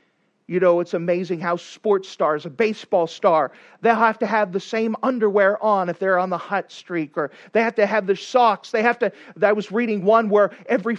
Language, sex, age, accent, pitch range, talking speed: English, male, 40-59, American, 190-255 Hz, 220 wpm